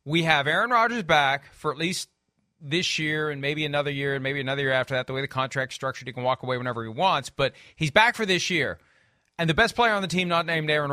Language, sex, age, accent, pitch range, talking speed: English, male, 40-59, American, 140-195 Hz, 265 wpm